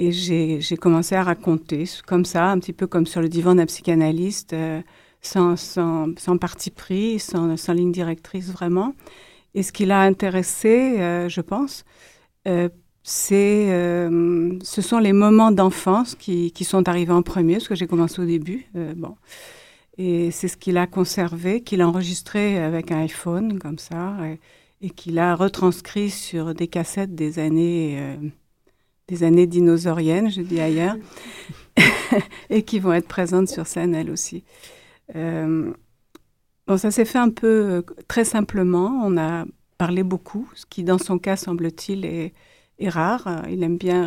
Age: 60-79